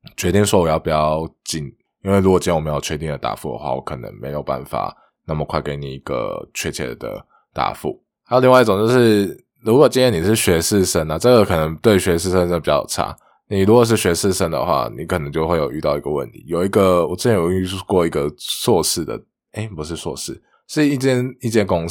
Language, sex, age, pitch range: Chinese, male, 20-39, 80-120 Hz